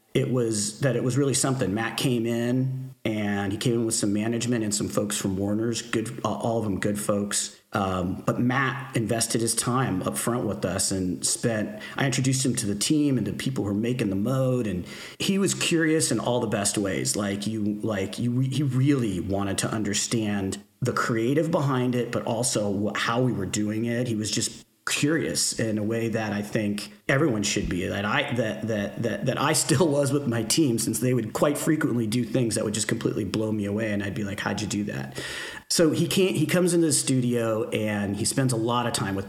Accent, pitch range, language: American, 105-125 Hz, English